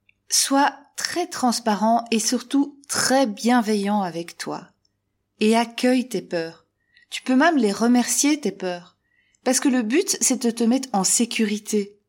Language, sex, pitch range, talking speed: French, female, 180-245 Hz, 150 wpm